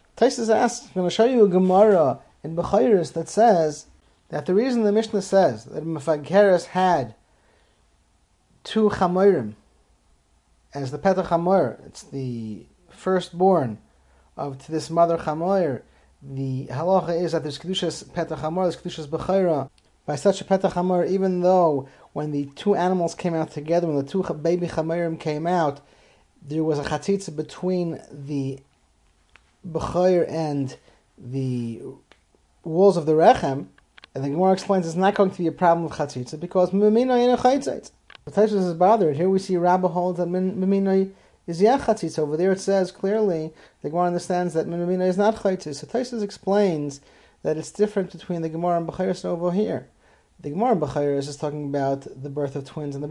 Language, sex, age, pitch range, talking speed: English, male, 30-49, 145-190 Hz, 165 wpm